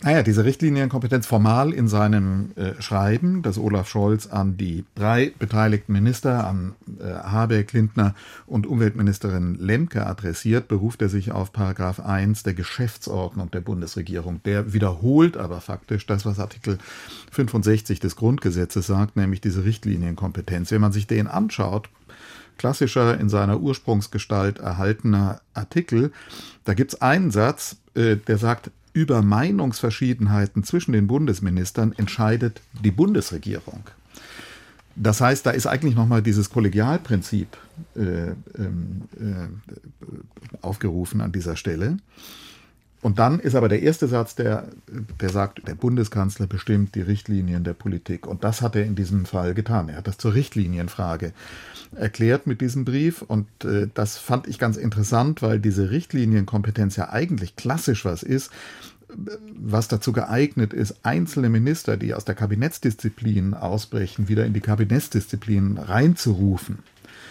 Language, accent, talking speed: German, German, 135 wpm